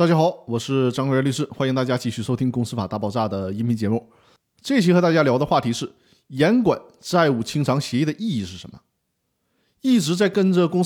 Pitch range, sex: 125-190 Hz, male